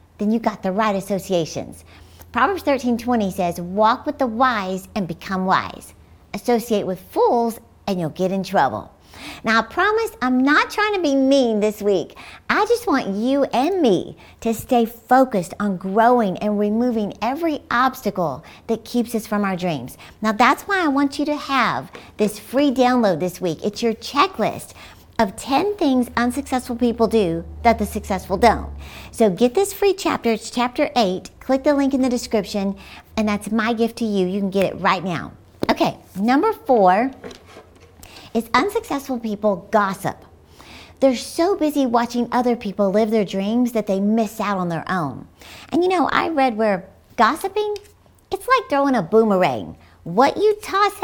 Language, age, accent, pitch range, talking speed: English, 50-69, American, 200-265 Hz, 175 wpm